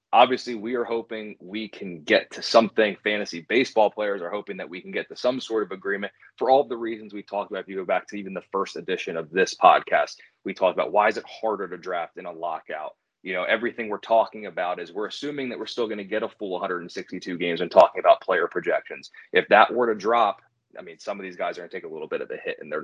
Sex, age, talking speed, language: male, 30-49, 265 wpm, English